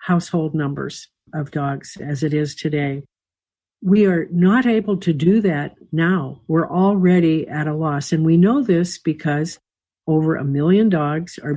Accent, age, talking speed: American, 60-79, 160 wpm